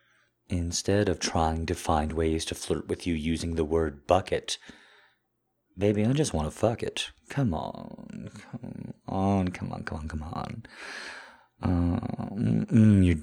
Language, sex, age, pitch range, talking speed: English, male, 30-49, 80-105 Hz, 145 wpm